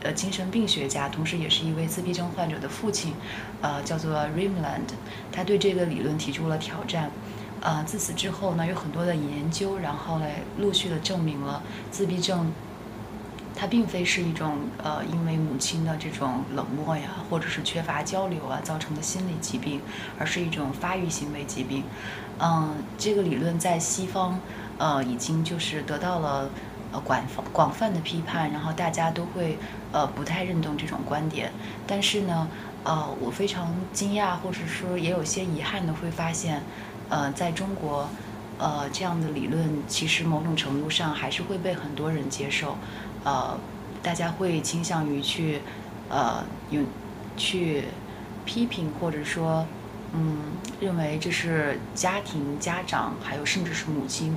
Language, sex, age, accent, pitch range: Chinese, female, 20-39, native, 150-180 Hz